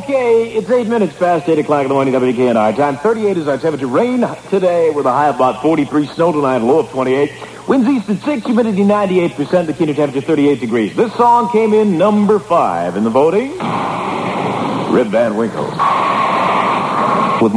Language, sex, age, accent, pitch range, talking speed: English, male, 50-69, American, 140-200 Hz, 180 wpm